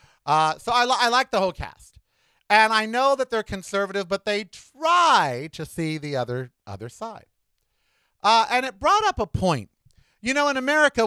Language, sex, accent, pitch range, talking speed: English, male, American, 120-175 Hz, 190 wpm